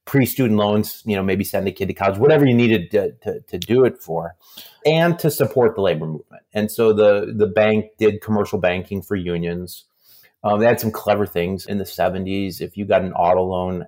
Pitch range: 90-110 Hz